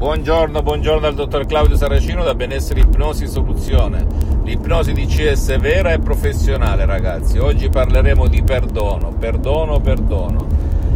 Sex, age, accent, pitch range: male, 50-69, native, 75-105 Hz